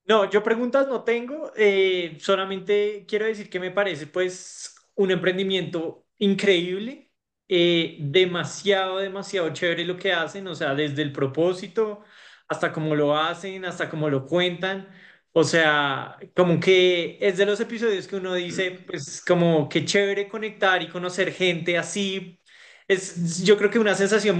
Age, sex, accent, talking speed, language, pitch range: 20-39, male, Colombian, 150 wpm, Spanish, 165-195 Hz